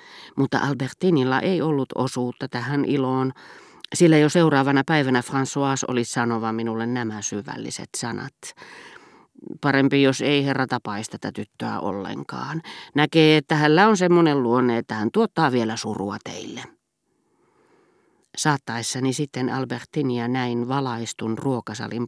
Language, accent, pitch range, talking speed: Finnish, native, 115-160 Hz, 120 wpm